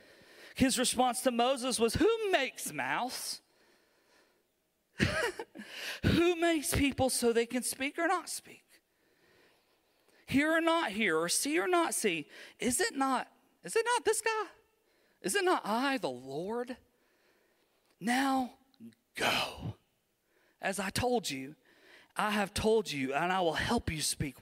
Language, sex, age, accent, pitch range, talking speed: English, male, 40-59, American, 205-310 Hz, 140 wpm